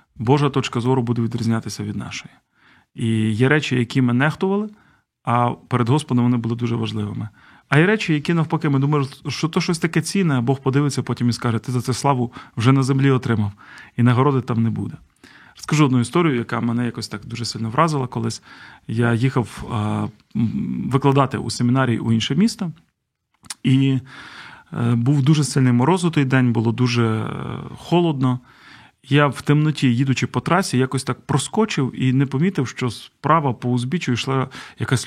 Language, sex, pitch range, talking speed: Ukrainian, male, 120-145 Hz, 170 wpm